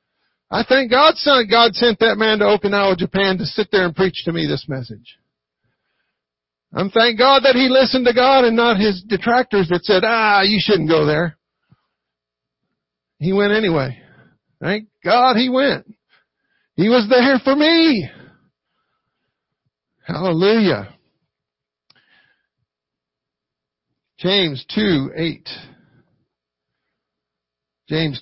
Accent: American